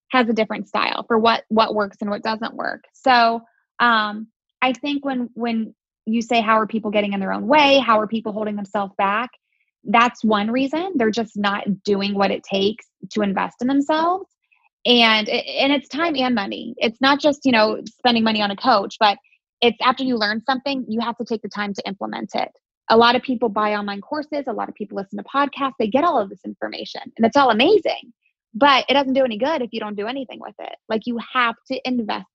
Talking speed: 225 wpm